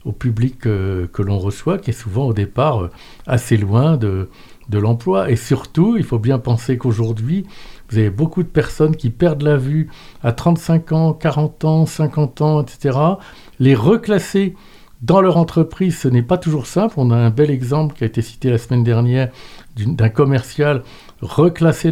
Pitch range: 115-150 Hz